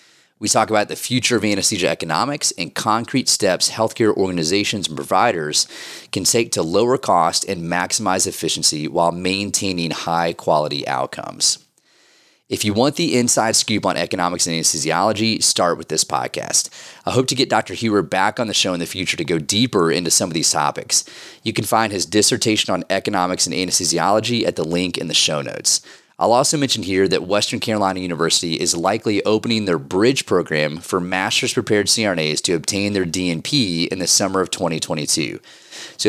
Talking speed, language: 175 wpm, English